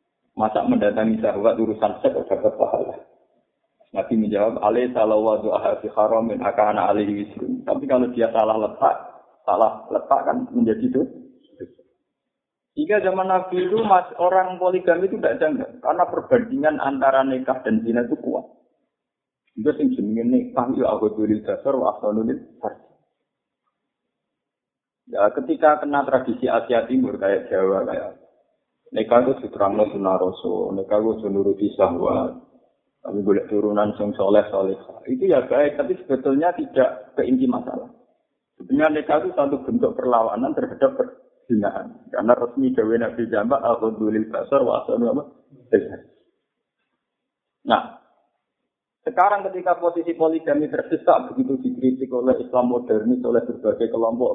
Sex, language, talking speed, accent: male, Indonesian, 110 wpm, native